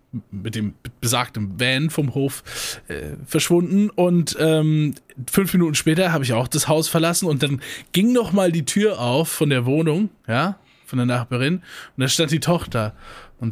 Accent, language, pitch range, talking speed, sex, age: German, German, 120-175 Hz, 180 wpm, male, 20-39